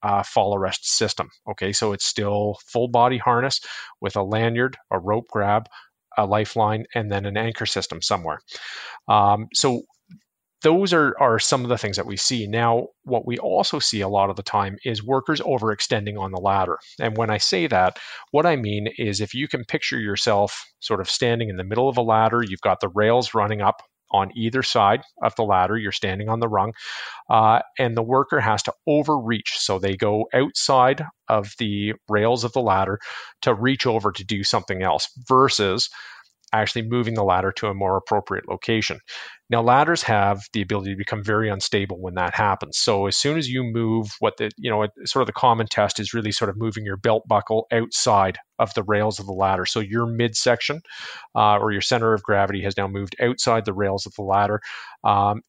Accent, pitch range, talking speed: American, 100-120 Hz, 205 wpm